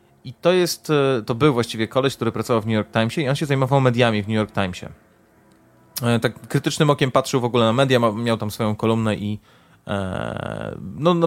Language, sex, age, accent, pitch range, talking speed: Polish, male, 30-49, native, 115-145 Hz, 190 wpm